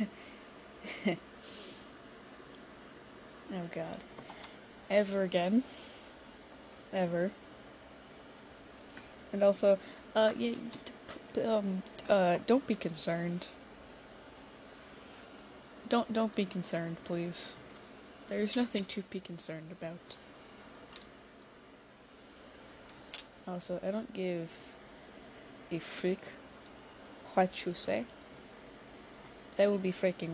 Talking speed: 75 wpm